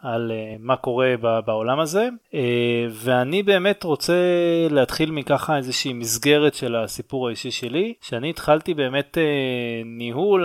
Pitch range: 120-170 Hz